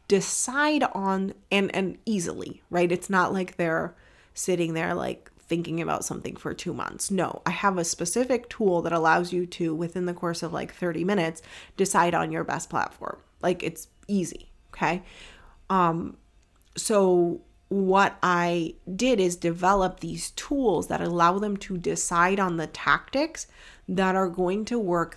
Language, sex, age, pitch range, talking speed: English, female, 30-49, 170-195 Hz, 160 wpm